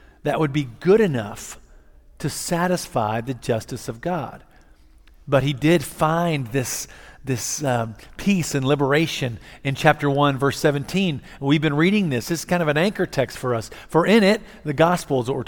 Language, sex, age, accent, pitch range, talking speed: English, male, 50-69, American, 120-165 Hz, 180 wpm